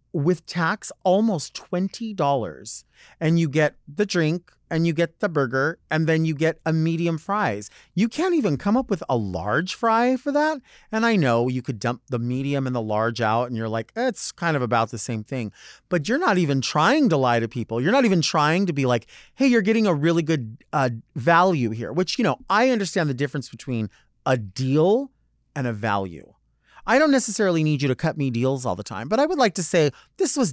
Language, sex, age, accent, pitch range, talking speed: English, male, 30-49, American, 120-180 Hz, 220 wpm